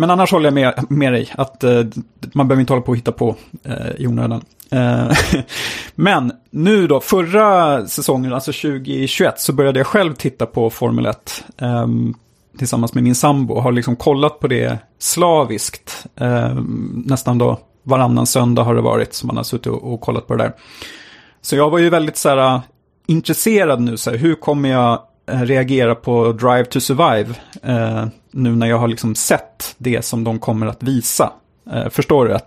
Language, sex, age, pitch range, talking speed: Swedish, male, 30-49, 115-135 Hz, 185 wpm